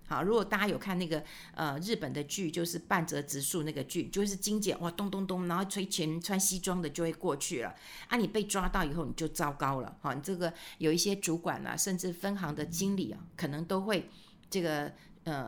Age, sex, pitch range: 50-69, female, 170-220 Hz